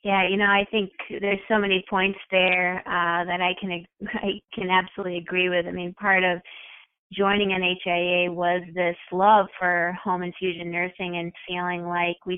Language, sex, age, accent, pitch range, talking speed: English, female, 30-49, American, 180-205 Hz, 180 wpm